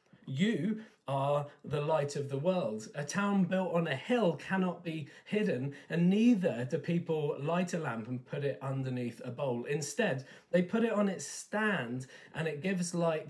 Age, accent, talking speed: 40-59, British, 180 wpm